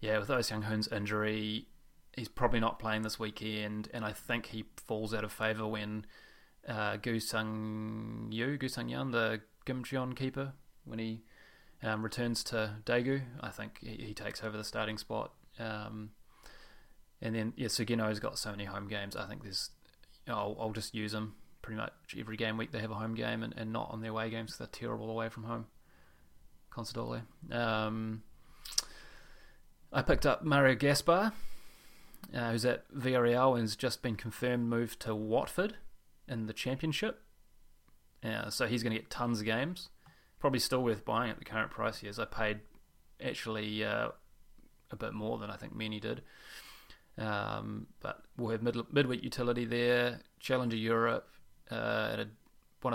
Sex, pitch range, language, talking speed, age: male, 110-120 Hz, English, 175 wpm, 20-39